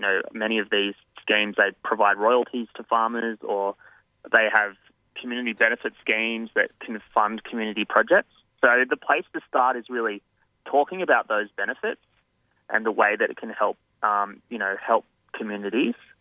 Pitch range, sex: 105-120 Hz, male